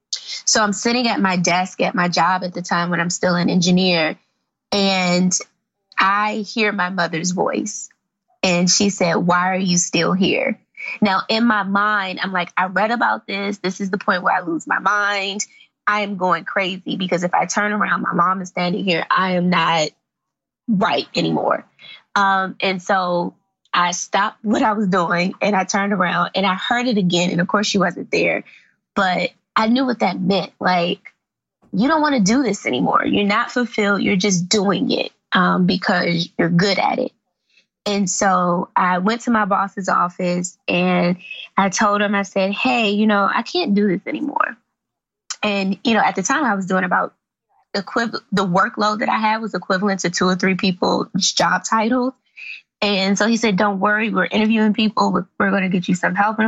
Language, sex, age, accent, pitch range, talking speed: English, female, 20-39, American, 180-210 Hz, 195 wpm